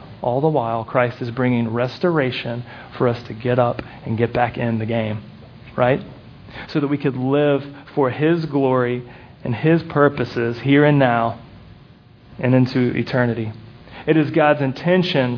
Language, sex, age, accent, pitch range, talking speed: English, male, 40-59, American, 125-150 Hz, 155 wpm